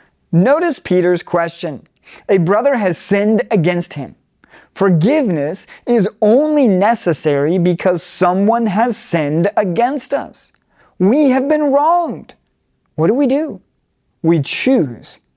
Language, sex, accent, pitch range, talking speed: English, male, American, 175-255 Hz, 115 wpm